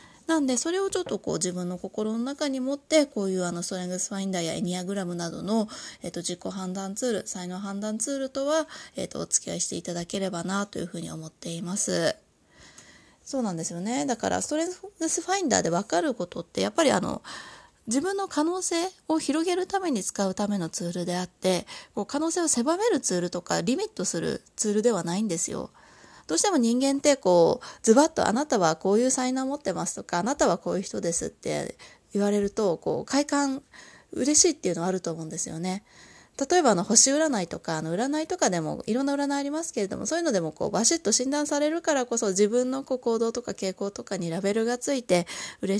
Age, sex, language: 20-39, female, Japanese